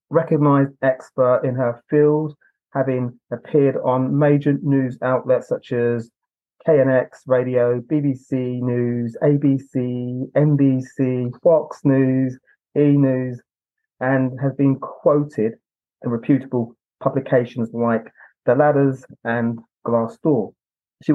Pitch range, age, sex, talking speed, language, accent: 125-145 Hz, 30-49, male, 100 wpm, English, British